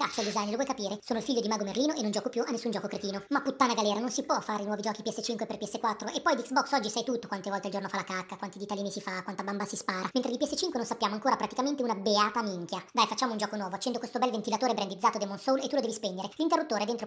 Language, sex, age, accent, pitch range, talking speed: Italian, male, 50-69, native, 205-255 Hz, 295 wpm